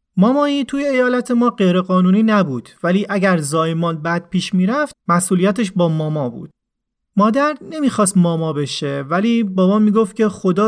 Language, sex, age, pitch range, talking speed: Persian, male, 30-49, 165-215 Hz, 145 wpm